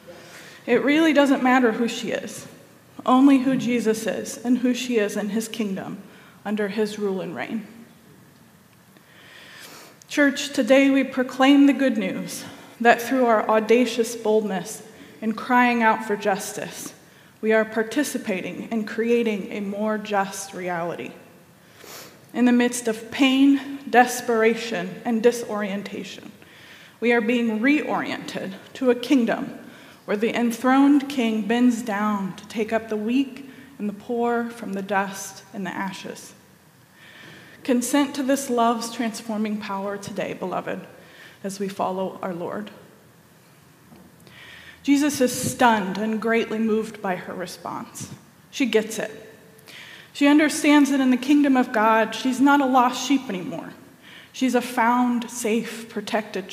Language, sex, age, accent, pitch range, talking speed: English, female, 20-39, American, 215-255 Hz, 135 wpm